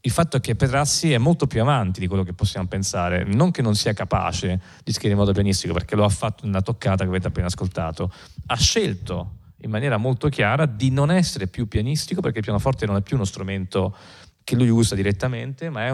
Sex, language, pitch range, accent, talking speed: male, Italian, 95-125 Hz, native, 225 wpm